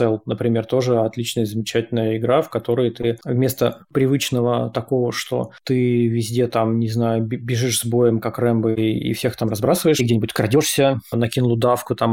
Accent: native